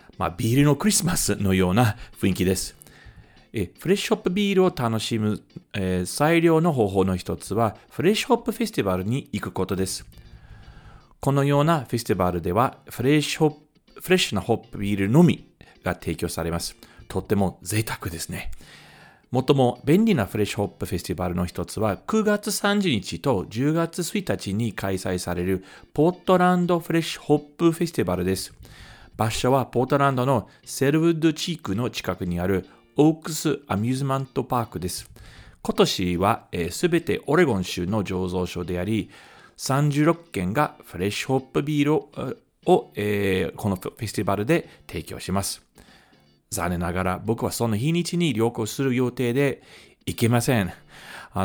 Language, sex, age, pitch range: Japanese, male, 40-59, 95-150 Hz